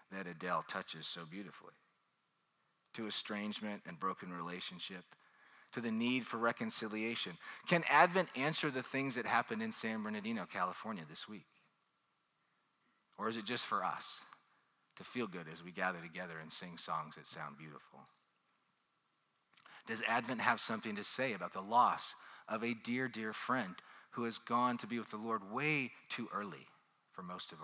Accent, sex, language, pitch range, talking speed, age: American, male, English, 90-125 Hz, 165 wpm, 40-59